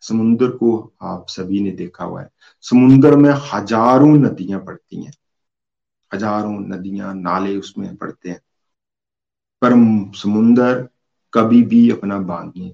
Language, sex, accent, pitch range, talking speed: Hindi, male, native, 105-140 Hz, 125 wpm